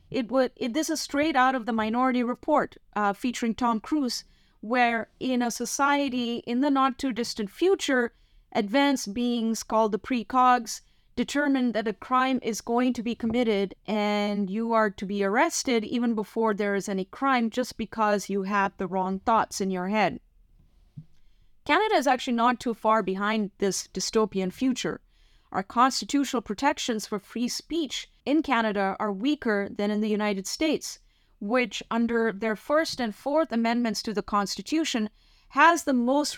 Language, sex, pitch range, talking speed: English, female, 215-265 Hz, 160 wpm